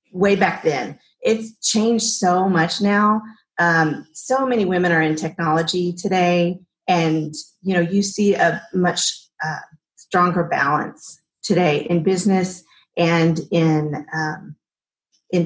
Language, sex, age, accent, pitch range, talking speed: English, female, 40-59, American, 165-200 Hz, 130 wpm